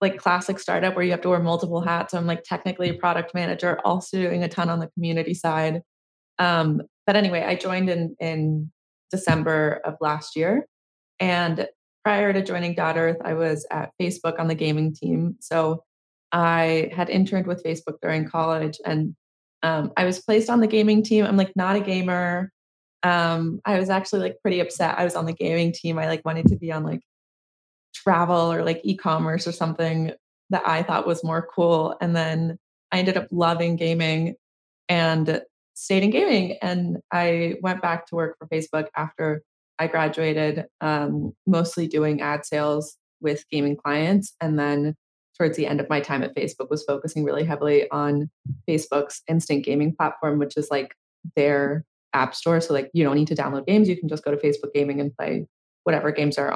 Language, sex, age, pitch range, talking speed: English, female, 20-39, 155-180 Hz, 190 wpm